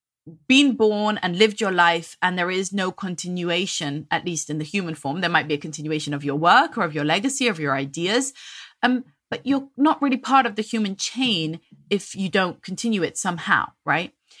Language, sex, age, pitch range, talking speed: English, female, 30-49, 175-250 Hz, 205 wpm